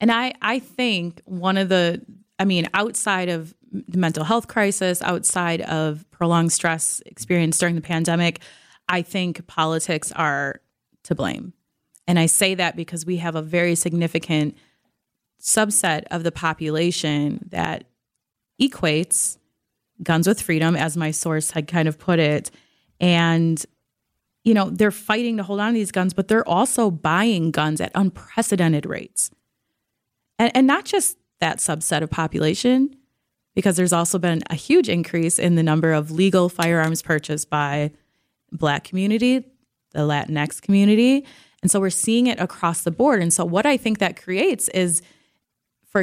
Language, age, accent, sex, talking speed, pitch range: English, 30-49, American, female, 155 wpm, 160-205 Hz